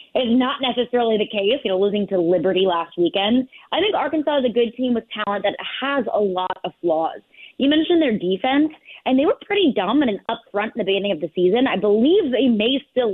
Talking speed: 225 wpm